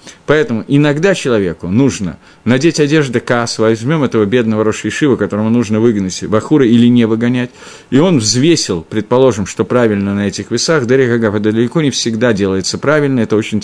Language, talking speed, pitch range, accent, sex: Russian, 160 wpm, 110-150 Hz, native, male